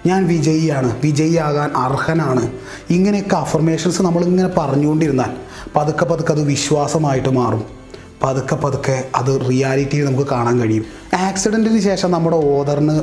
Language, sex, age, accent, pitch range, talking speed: Malayalam, male, 30-49, native, 135-165 Hz, 115 wpm